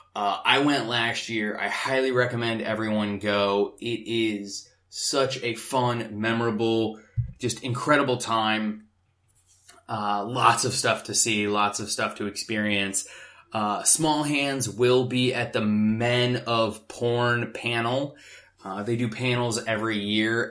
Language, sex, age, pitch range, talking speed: English, male, 20-39, 105-130 Hz, 140 wpm